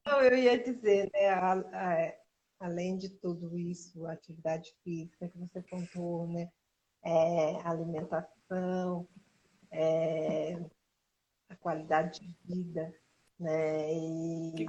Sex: female